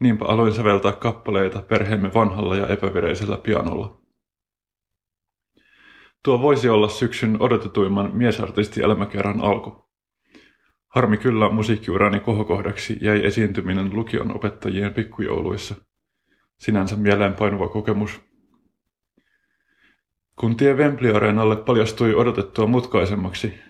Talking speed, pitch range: 95 wpm, 100-115 Hz